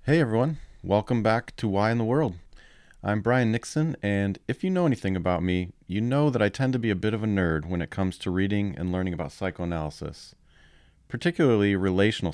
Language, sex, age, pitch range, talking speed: English, male, 40-59, 90-115 Hz, 205 wpm